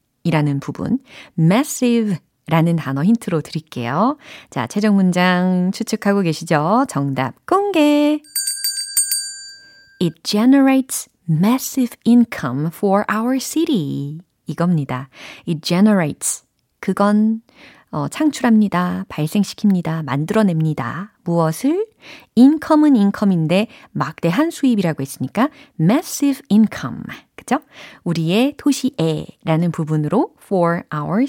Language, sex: Korean, female